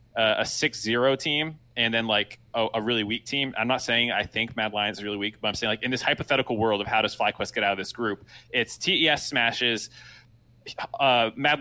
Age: 20-39